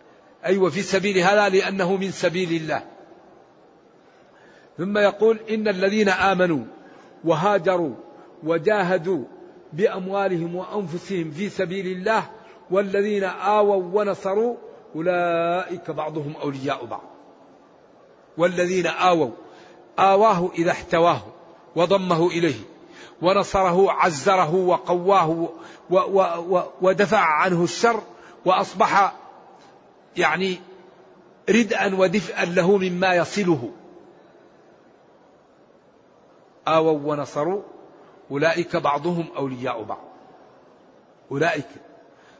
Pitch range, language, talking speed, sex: 170-200 Hz, Arabic, 80 wpm, male